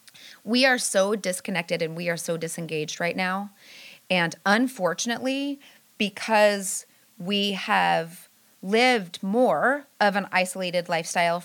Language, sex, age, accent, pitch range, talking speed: English, female, 30-49, American, 175-215 Hz, 115 wpm